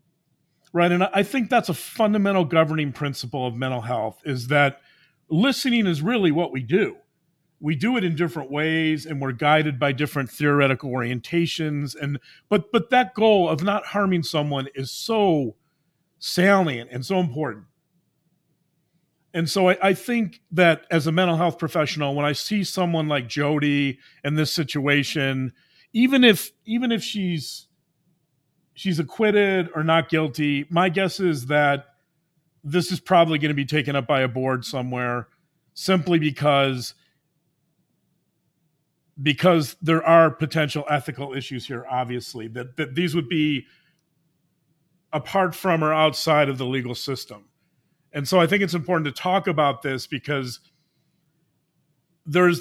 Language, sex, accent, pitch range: English, male, American, 145-175 Hz